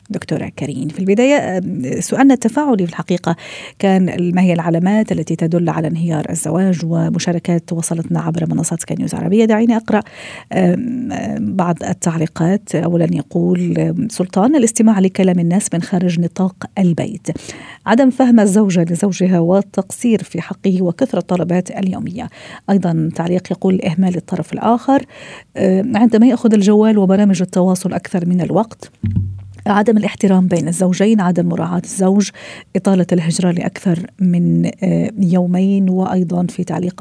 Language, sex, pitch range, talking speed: Arabic, female, 175-205 Hz, 125 wpm